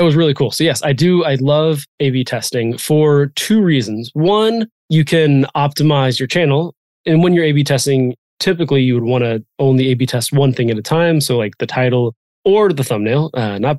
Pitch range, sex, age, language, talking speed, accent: 125-155 Hz, male, 20-39, English, 220 wpm, American